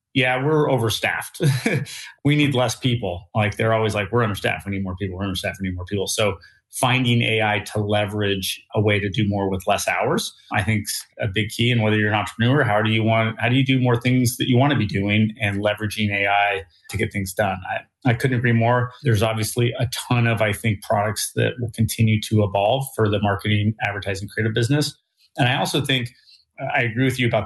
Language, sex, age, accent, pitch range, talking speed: English, male, 30-49, American, 105-125 Hz, 225 wpm